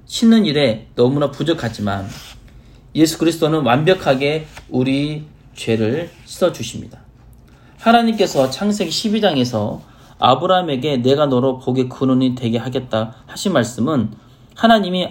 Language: Korean